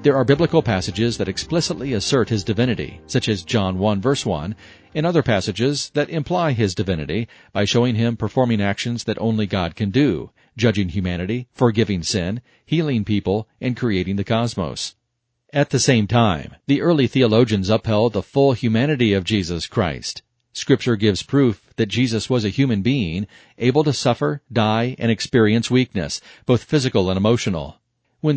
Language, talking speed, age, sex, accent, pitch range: English, 165 wpm, 40-59, male, American, 105-130 Hz